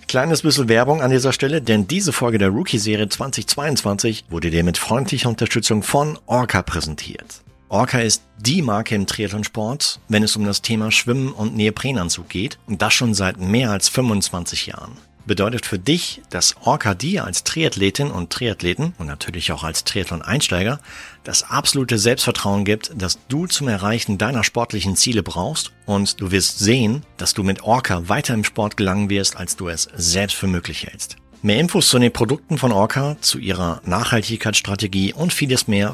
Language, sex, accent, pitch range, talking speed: German, male, German, 95-125 Hz, 170 wpm